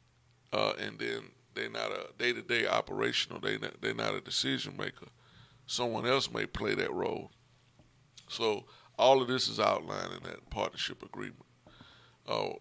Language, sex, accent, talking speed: English, male, American, 150 wpm